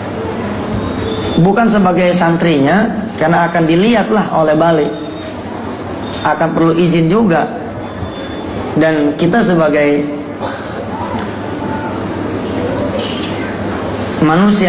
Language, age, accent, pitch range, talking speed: English, 30-49, Indonesian, 150-205 Hz, 65 wpm